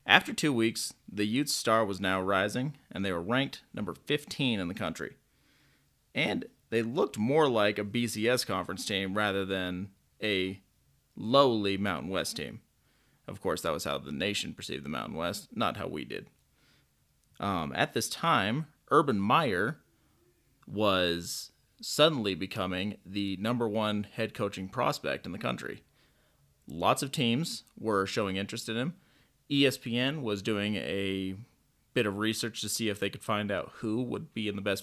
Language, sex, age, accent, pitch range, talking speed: English, male, 30-49, American, 95-110 Hz, 165 wpm